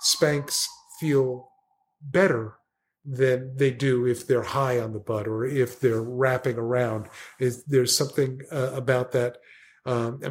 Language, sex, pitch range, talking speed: English, male, 120-140 Hz, 140 wpm